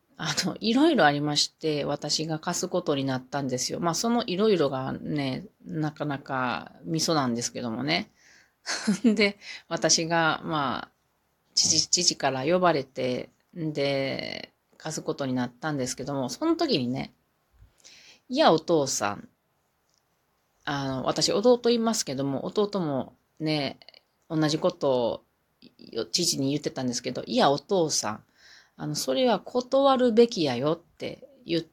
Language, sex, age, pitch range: Japanese, female, 30-49, 140-230 Hz